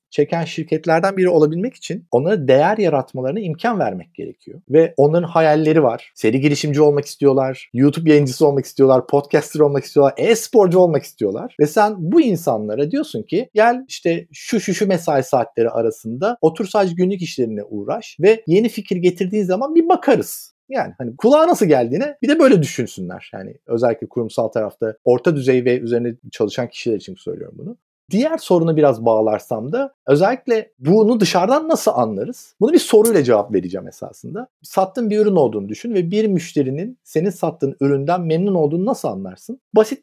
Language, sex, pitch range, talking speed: Turkish, male, 140-200 Hz, 165 wpm